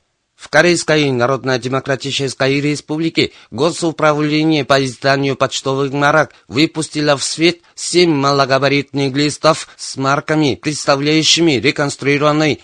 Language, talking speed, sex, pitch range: Russian, 90 wpm, male, 130-150 Hz